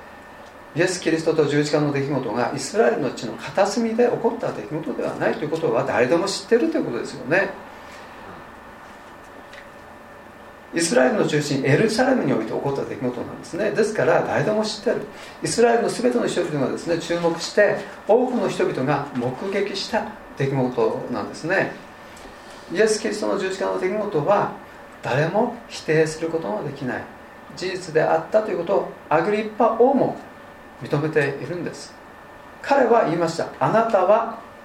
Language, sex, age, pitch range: Japanese, male, 40-59, 155-220 Hz